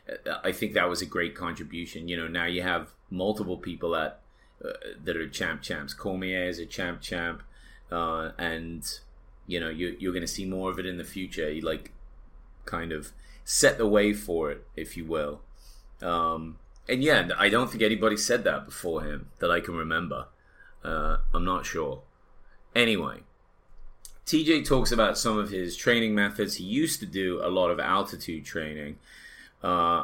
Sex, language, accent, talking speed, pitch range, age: male, English, British, 180 wpm, 85-105 Hz, 30-49